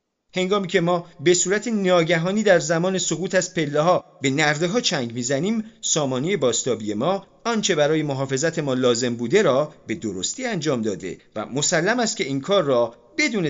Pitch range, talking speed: 115-180 Hz, 175 wpm